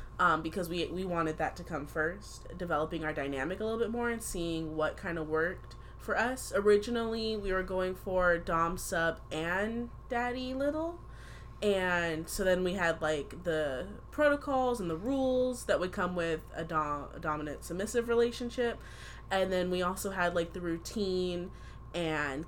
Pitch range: 155-190 Hz